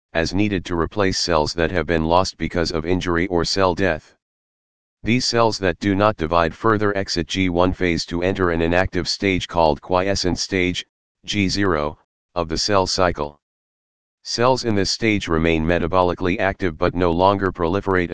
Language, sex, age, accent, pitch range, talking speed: Hindi, male, 40-59, American, 80-100 Hz, 160 wpm